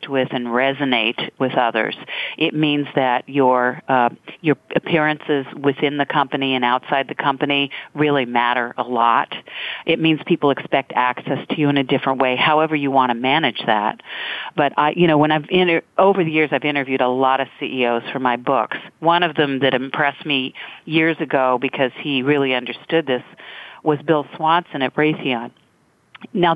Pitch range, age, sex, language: 130-155 Hz, 50-69, female, English